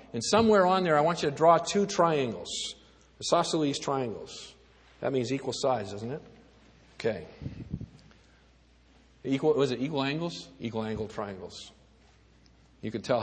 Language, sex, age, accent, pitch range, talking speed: English, male, 50-69, American, 110-175 Hz, 140 wpm